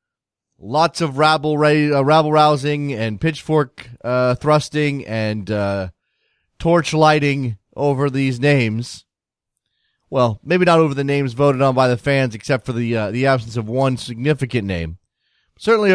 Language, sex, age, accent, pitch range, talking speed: English, male, 30-49, American, 125-155 Hz, 145 wpm